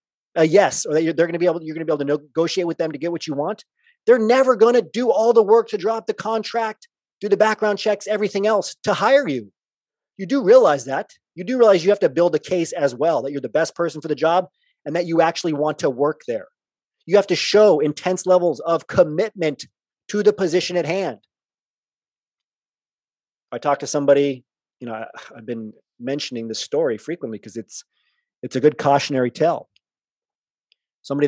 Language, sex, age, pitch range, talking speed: English, male, 30-49, 140-200 Hz, 205 wpm